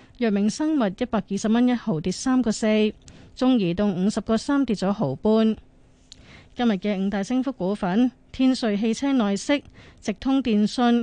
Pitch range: 190-235 Hz